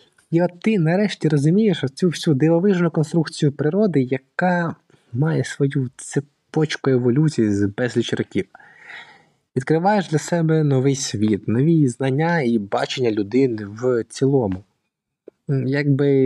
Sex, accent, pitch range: male, native, 120-160 Hz